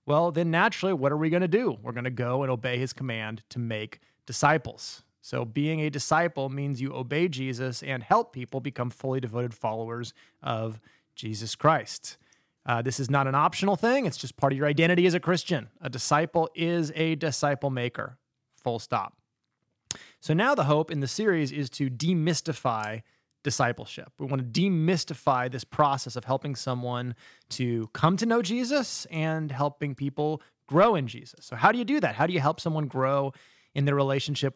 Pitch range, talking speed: 130-170 Hz, 190 wpm